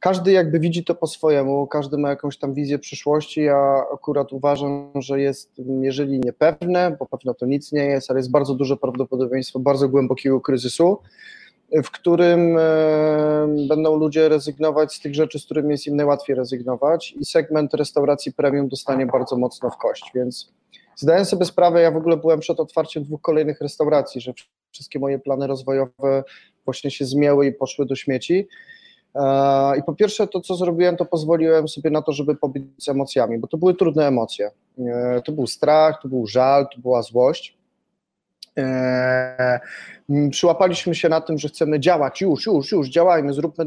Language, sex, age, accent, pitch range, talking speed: Polish, male, 20-39, native, 135-160 Hz, 170 wpm